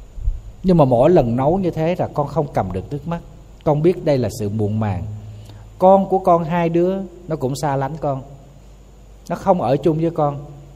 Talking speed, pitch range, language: 205 wpm, 105-150 Hz, Vietnamese